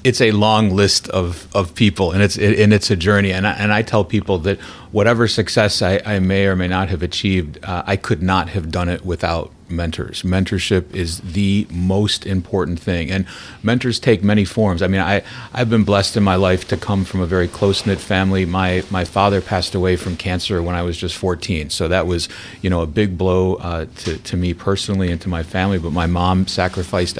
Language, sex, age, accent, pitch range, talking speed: English, male, 40-59, American, 85-100 Hz, 225 wpm